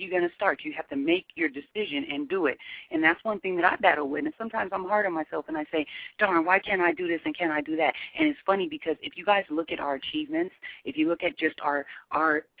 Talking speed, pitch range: 280 wpm, 150-215 Hz